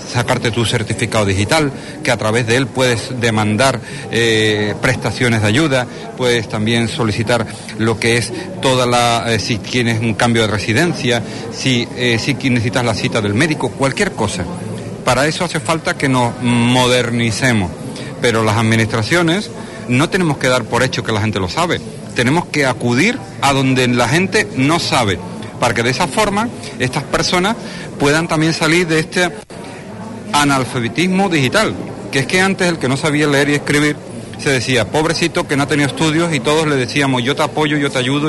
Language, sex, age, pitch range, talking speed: Spanish, male, 40-59, 115-155 Hz, 175 wpm